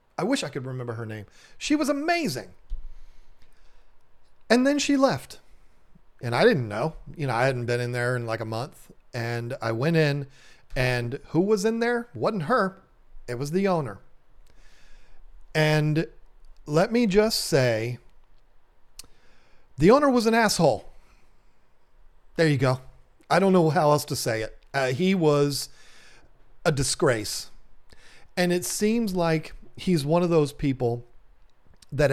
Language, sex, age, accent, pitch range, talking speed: English, male, 40-59, American, 125-175 Hz, 150 wpm